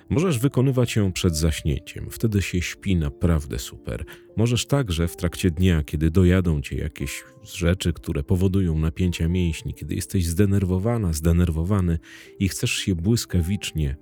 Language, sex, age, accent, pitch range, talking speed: Polish, male, 40-59, native, 80-105 Hz, 135 wpm